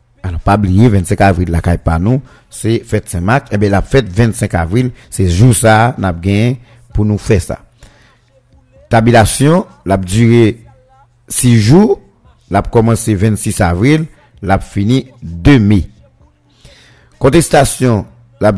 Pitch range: 100-120 Hz